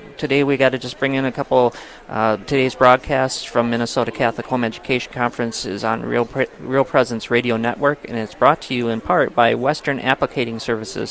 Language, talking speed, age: English, 200 wpm, 40-59